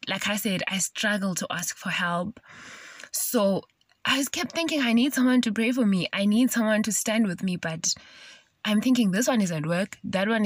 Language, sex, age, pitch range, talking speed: English, female, 20-39, 175-215 Hz, 220 wpm